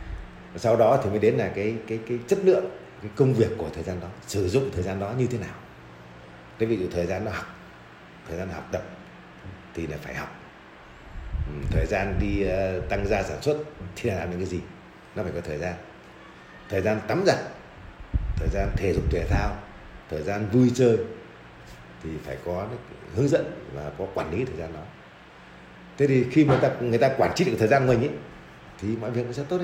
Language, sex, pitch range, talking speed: Vietnamese, male, 85-125 Hz, 220 wpm